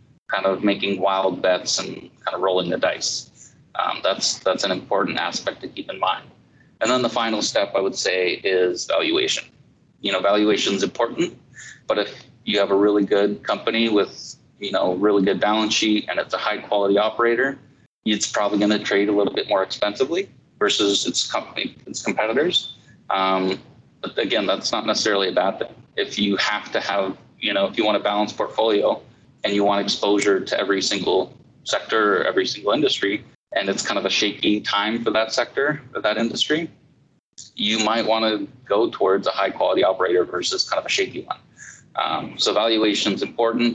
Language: English